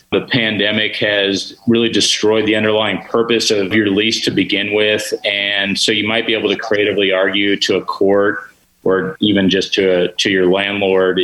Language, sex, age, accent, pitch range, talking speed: English, male, 30-49, American, 95-105 Hz, 180 wpm